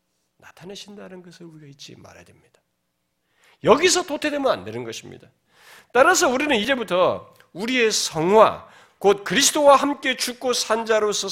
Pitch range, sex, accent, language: 170-245 Hz, male, native, Korean